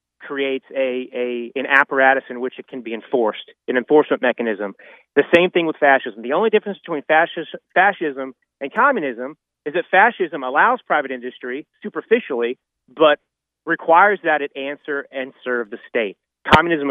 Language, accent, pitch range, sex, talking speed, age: English, American, 130-160 Hz, male, 155 wpm, 30-49